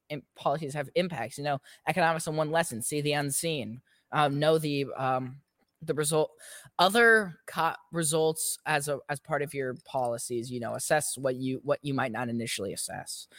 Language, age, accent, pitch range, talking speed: English, 10-29, American, 140-175 Hz, 180 wpm